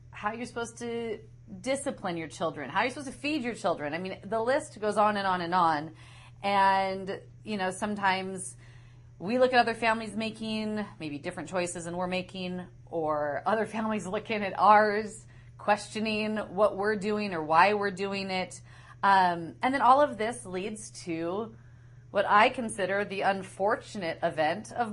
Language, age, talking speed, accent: English, 30-49, 175 wpm, American